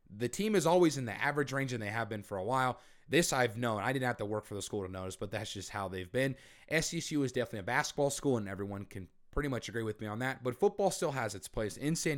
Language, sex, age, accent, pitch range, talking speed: English, male, 30-49, American, 115-155 Hz, 285 wpm